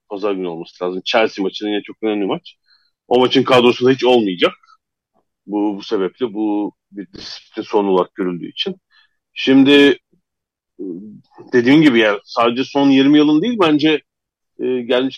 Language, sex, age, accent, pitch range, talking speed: Turkish, male, 40-59, native, 110-150 Hz, 145 wpm